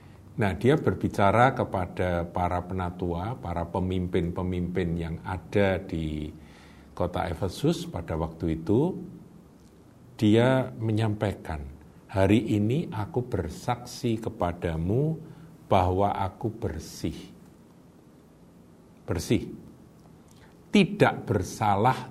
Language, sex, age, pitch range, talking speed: Indonesian, male, 50-69, 85-110 Hz, 80 wpm